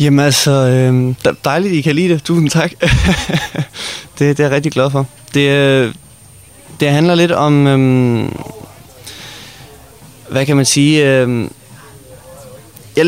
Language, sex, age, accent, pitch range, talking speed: Danish, male, 20-39, native, 120-145 Hz, 120 wpm